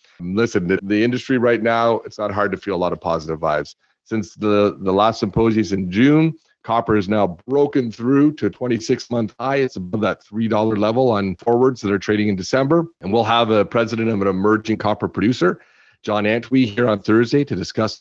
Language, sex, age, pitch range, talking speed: English, male, 40-59, 105-130 Hz, 205 wpm